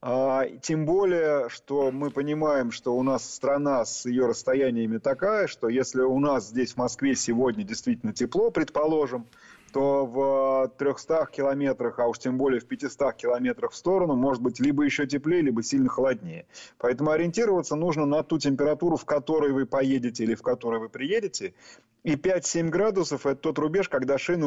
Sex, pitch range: male, 130-170 Hz